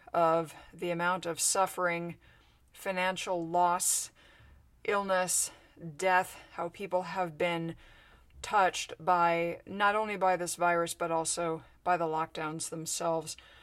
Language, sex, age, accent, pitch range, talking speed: English, female, 40-59, American, 165-185 Hz, 115 wpm